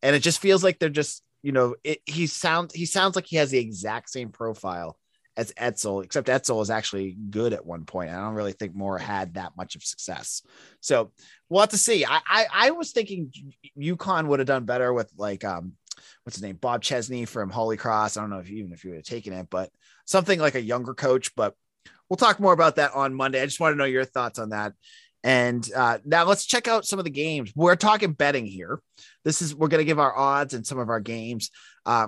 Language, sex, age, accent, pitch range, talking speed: English, male, 30-49, American, 110-165 Hz, 240 wpm